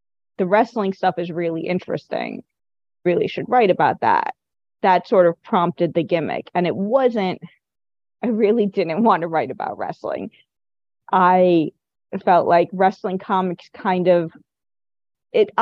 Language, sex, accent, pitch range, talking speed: English, female, American, 170-205 Hz, 140 wpm